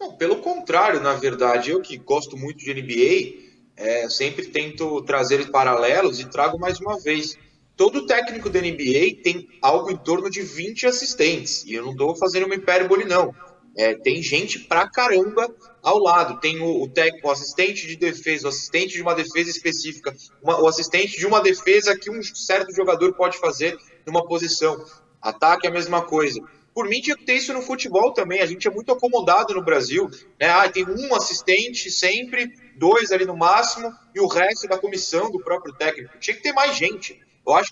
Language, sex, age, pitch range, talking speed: Portuguese, male, 20-39, 160-250 Hz, 190 wpm